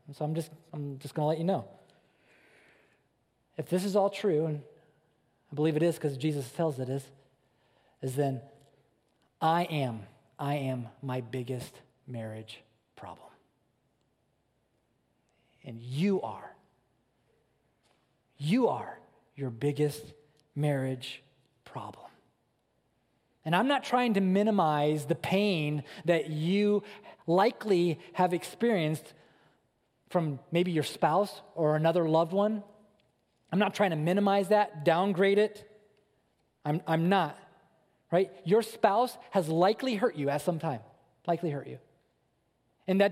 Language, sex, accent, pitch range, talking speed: English, male, American, 145-195 Hz, 125 wpm